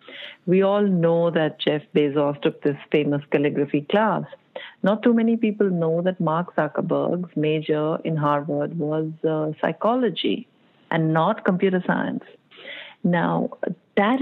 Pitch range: 160-215 Hz